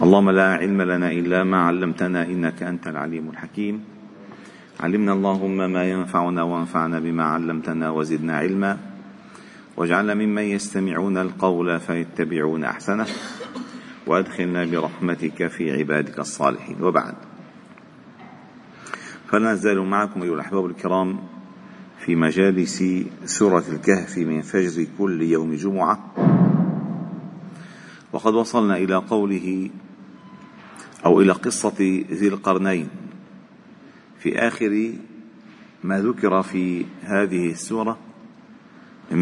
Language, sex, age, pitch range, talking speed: Arabic, male, 40-59, 90-115 Hz, 95 wpm